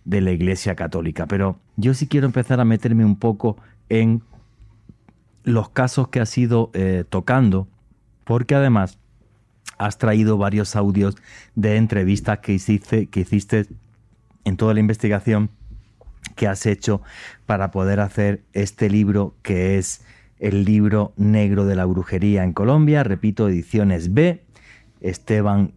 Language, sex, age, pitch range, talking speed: Spanish, male, 30-49, 100-115 Hz, 135 wpm